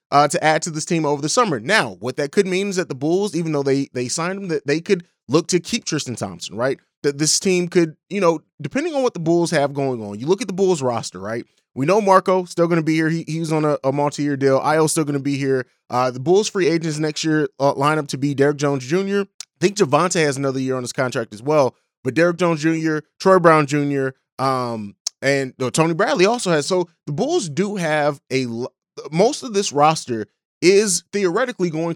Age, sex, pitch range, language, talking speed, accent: 30-49, male, 135-175 Hz, English, 240 wpm, American